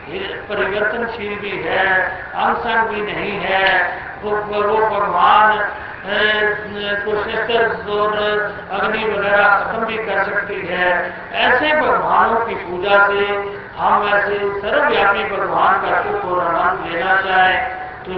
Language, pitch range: Hindi, 185-215 Hz